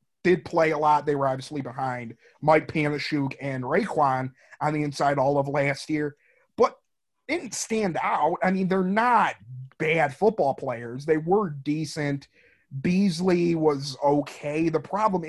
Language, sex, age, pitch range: English, male, 30-49, 145-185 Hz